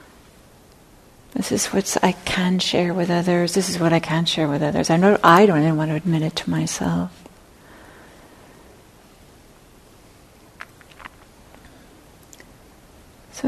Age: 40-59